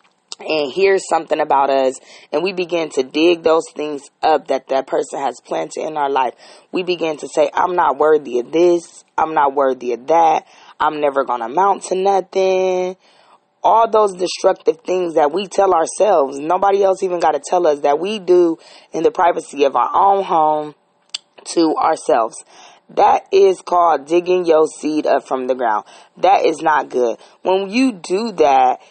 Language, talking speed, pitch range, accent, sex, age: English, 180 wpm, 155-210 Hz, American, female, 20-39